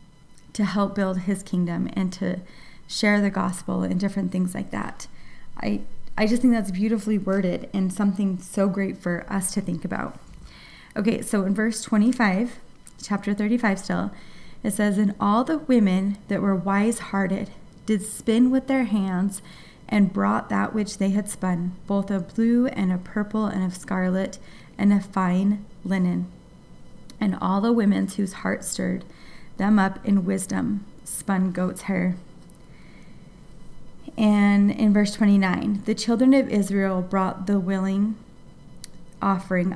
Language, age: English, 20-39